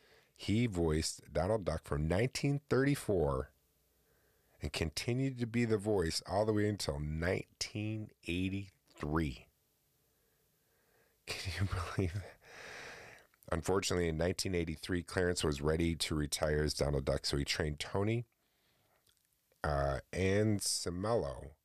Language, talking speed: English, 110 wpm